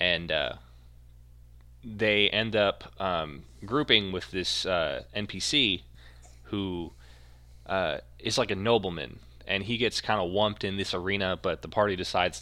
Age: 20-39